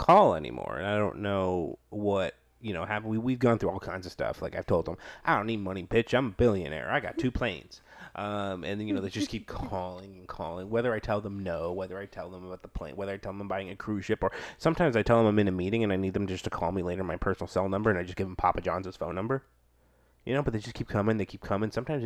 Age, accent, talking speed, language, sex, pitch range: 30-49, American, 295 wpm, English, male, 95-115 Hz